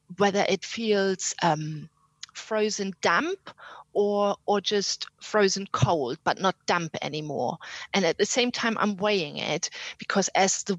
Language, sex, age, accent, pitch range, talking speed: English, female, 30-49, German, 170-205 Hz, 145 wpm